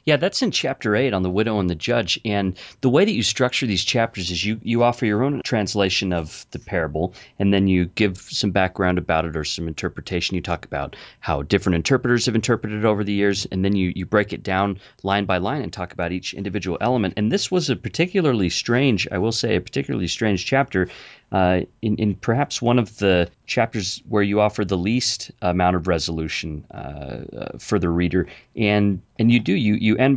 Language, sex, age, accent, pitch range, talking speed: English, male, 30-49, American, 90-120 Hz, 215 wpm